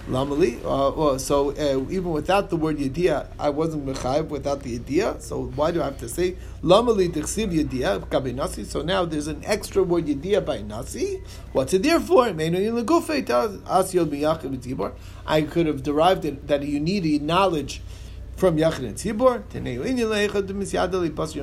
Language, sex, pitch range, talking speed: English, male, 145-205 Hz, 150 wpm